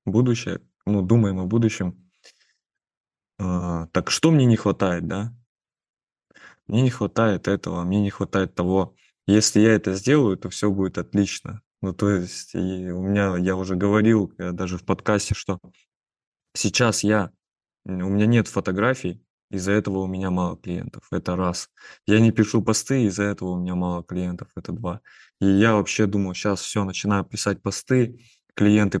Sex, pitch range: male, 90-110 Hz